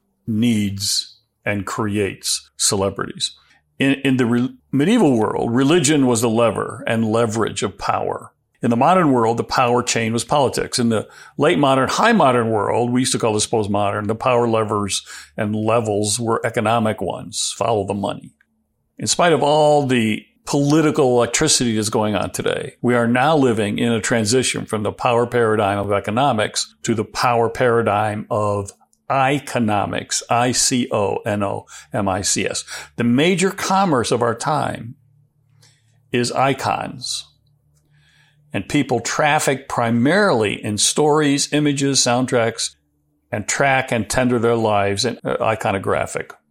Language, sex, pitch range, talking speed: English, male, 110-140 Hz, 145 wpm